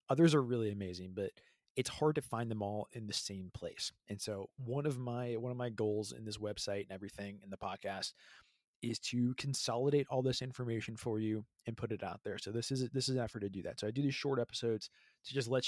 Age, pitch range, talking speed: 20-39, 105-130 Hz, 245 wpm